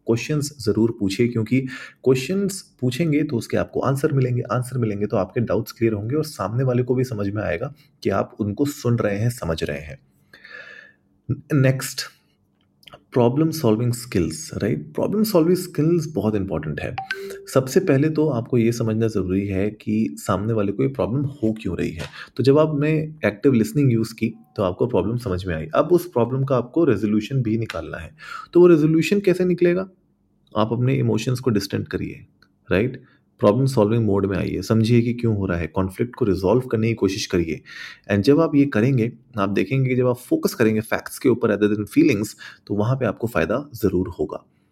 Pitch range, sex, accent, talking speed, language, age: 100-135 Hz, male, native, 160 wpm, Hindi, 30-49